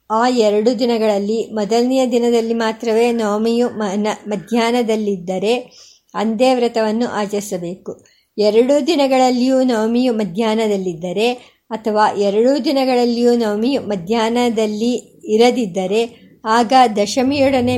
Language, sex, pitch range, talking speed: Kannada, male, 220-260 Hz, 80 wpm